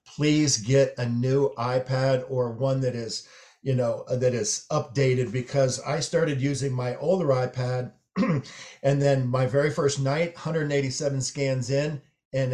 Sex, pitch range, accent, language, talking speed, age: male, 120-140 Hz, American, English, 150 wpm, 50-69